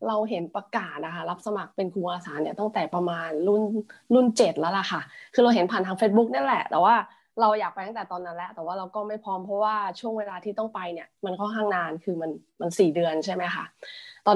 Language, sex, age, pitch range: Thai, female, 20-39, 185-225 Hz